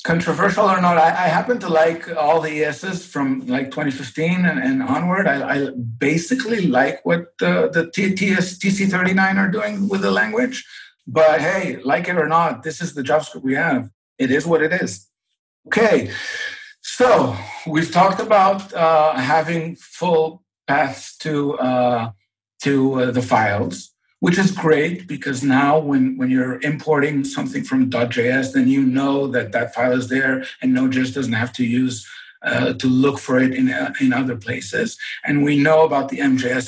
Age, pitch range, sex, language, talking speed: 50-69, 130-185 Hz, male, English, 170 wpm